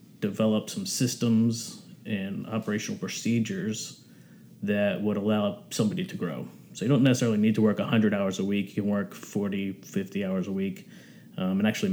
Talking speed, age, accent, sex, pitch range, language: 170 wpm, 30-49, American, male, 100-125 Hz, English